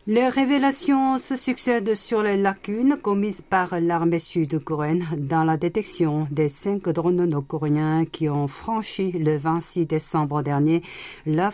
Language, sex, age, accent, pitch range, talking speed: French, female, 50-69, French, 150-185 Hz, 140 wpm